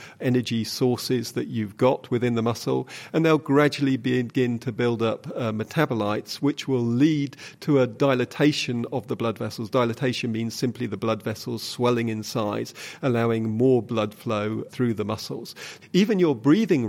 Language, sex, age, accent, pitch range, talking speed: English, male, 40-59, British, 115-140 Hz, 165 wpm